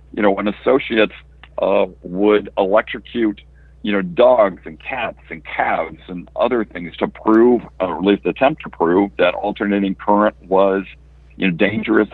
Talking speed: 160 wpm